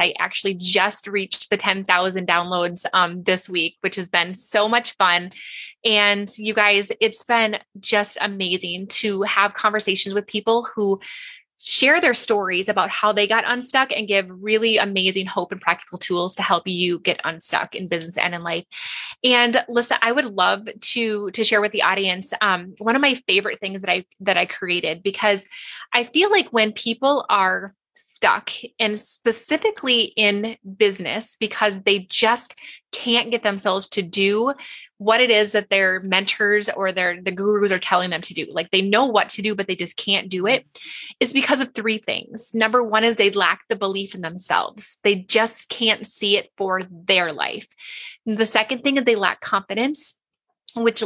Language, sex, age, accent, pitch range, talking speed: English, female, 20-39, American, 190-230 Hz, 180 wpm